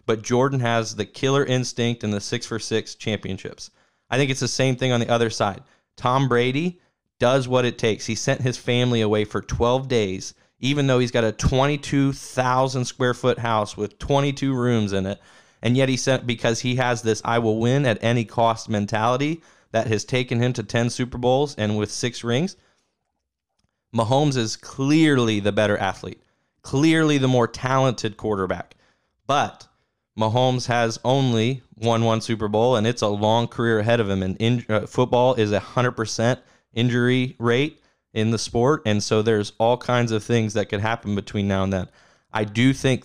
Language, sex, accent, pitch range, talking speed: English, male, American, 105-125 Hz, 175 wpm